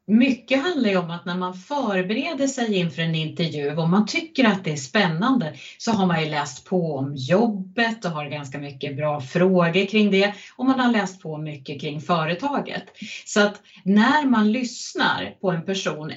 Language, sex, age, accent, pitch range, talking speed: Swedish, female, 30-49, native, 165-220 Hz, 190 wpm